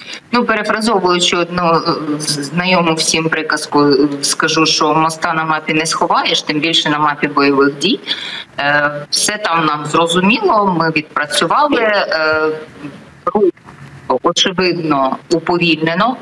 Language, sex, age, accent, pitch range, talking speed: Ukrainian, female, 20-39, native, 155-190 Hz, 105 wpm